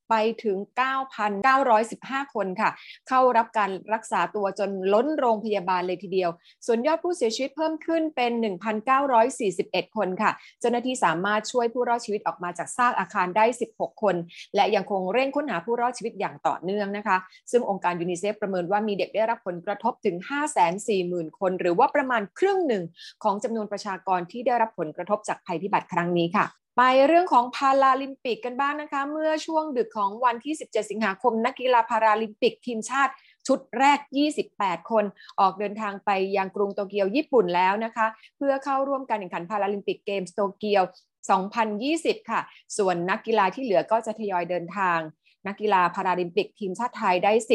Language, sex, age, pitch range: Thai, female, 20-39, 195-255 Hz